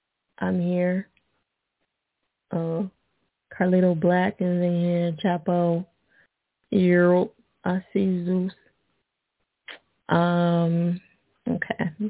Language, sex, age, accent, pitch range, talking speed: English, female, 20-39, American, 180-220 Hz, 90 wpm